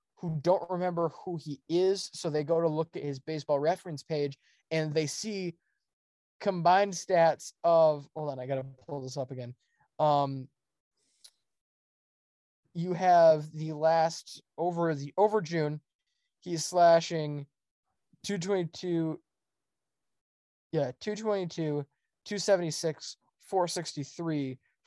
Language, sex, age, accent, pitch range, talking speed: English, male, 20-39, American, 145-175 Hz, 115 wpm